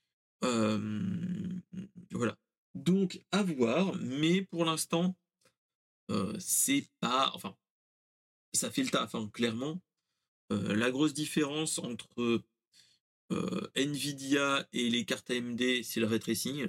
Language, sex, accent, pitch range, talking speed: French, male, French, 115-175 Hz, 115 wpm